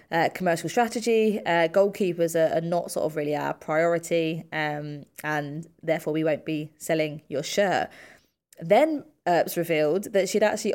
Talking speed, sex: 155 wpm, female